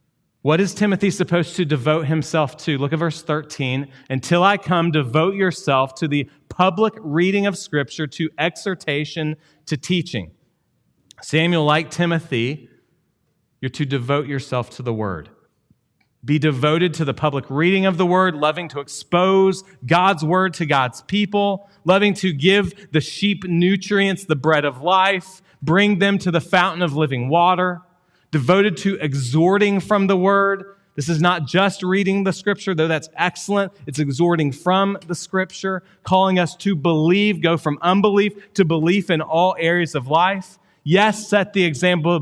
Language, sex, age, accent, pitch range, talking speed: English, male, 30-49, American, 140-190 Hz, 160 wpm